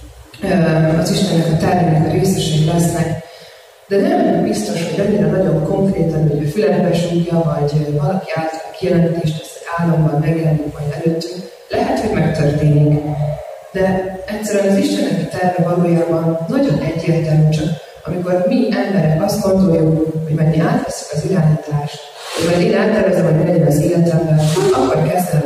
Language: Hungarian